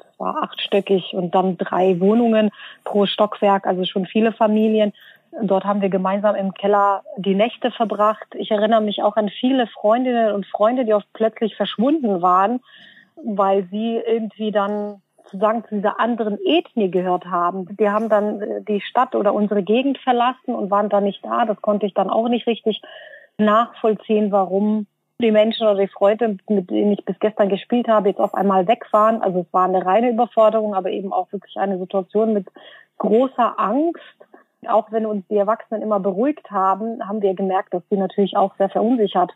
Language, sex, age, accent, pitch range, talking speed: German, female, 30-49, German, 195-225 Hz, 180 wpm